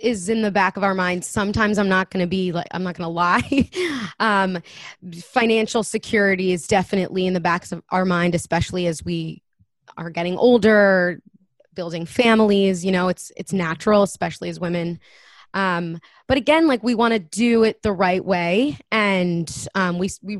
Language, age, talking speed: English, 20-39, 180 wpm